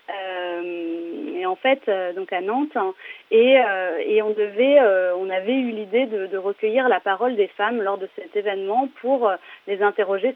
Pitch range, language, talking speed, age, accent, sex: 195-275 Hz, French, 195 wpm, 30-49, French, female